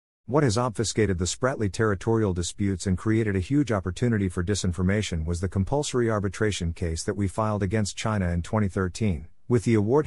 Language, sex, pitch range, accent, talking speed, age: English, male, 90-115 Hz, American, 175 wpm, 50-69